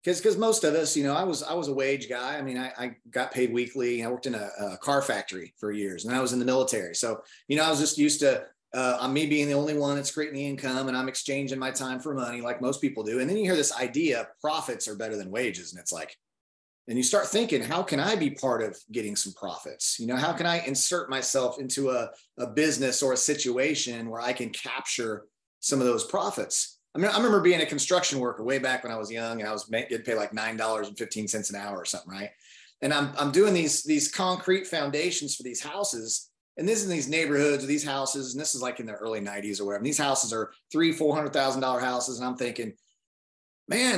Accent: American